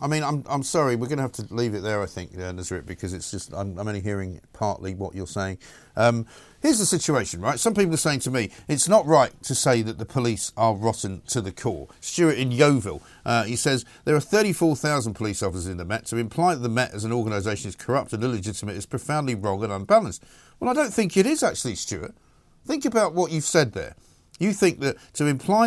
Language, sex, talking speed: English, male, 235 wpm